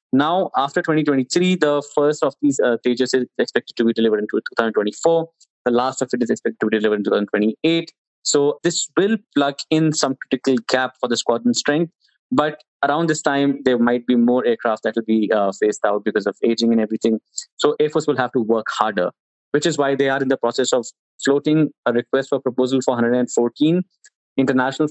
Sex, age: male, 20-39